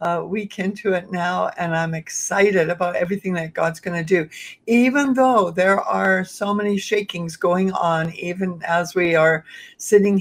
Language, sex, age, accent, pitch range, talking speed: English, female, 60-79, American, 180-215 Hz, 165 wpm